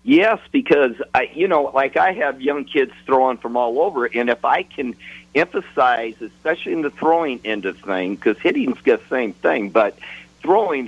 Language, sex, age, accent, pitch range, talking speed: English, male, 50-69, American, 115-140 Hz, 190 wpm